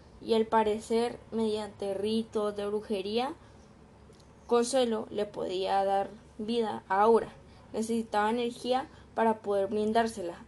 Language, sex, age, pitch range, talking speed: Spanish, female, 10-29, 205-235 Hz, 110 wpm